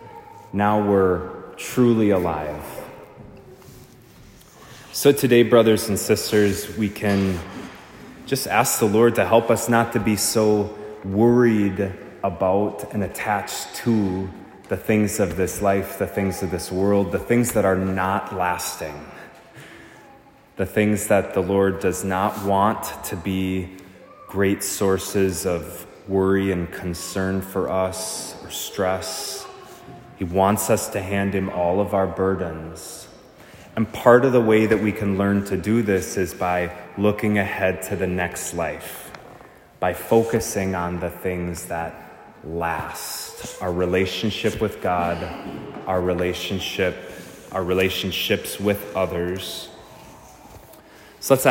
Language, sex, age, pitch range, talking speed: English, male, 20-39, 95-105 Hz, 130 wpm